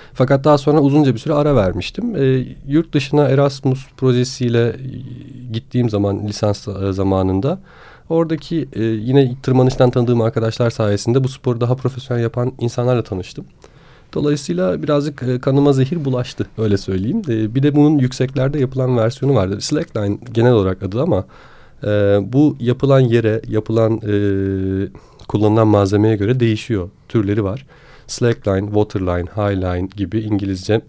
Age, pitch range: 40-59, 105-135 Hz